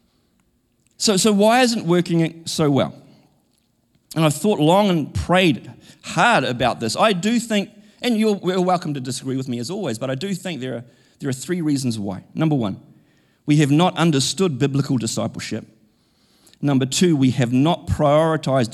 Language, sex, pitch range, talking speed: English, male, 115-155 Hz, 180 wpm